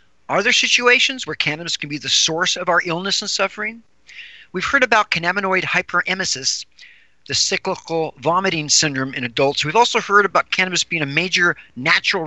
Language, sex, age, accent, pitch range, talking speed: English, male, 40-59, American, 155-205 Hz, 165 wpm